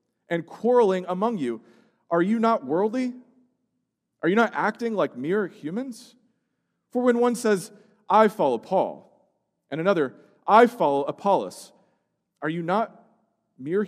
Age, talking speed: 40-59, 135 wpm